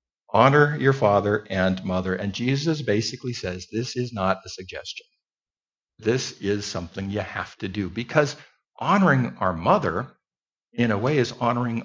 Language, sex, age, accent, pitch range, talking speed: English, male, 60-79, American, 110-150 Hz, 150 wpm